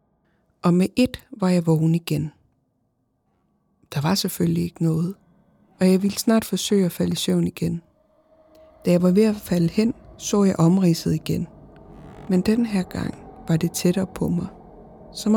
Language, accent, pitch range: Danish, native, 165-195 Hz